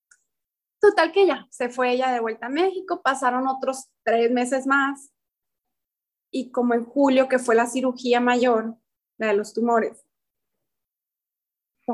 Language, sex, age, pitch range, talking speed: Spanish, female, 30-49, 240-290 Hz, 145 wpm